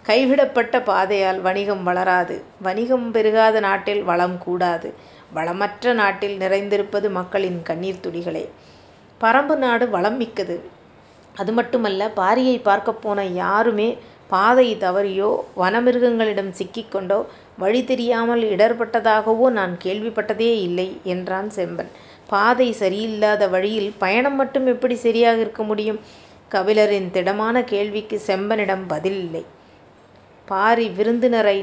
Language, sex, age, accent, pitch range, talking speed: Tamil, female, 30-49, native, 190-230 Hz, 100 wpm